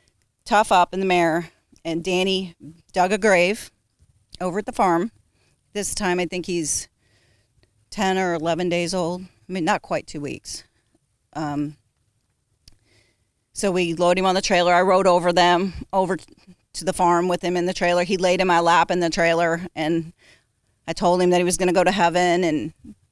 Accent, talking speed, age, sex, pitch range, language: American, 185 wpm, 40-59, female, 150-195 Hz, English